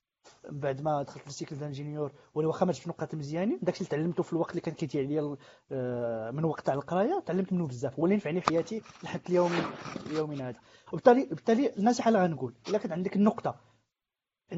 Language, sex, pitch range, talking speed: Arabic, male, 150-195 Hz, 170 wpm